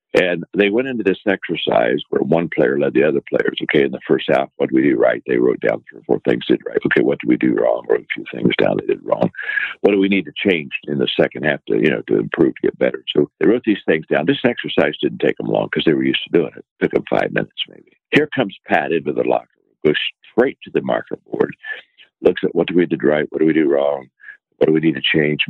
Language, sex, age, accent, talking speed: English, male, 60-79, American, 285 wpm